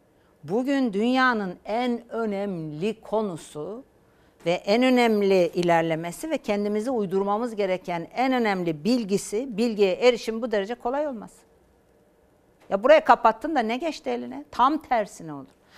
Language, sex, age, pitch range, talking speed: Turkish, female, 60-79, 175-250 Hz, 120 wpm